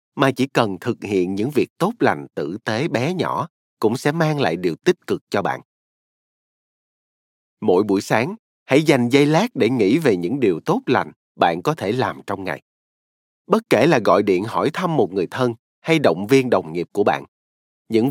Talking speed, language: 200 wpm, Vietnamese